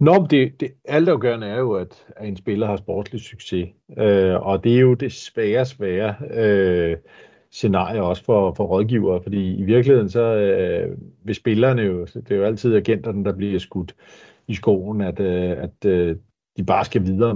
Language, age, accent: Danish, 50-69, native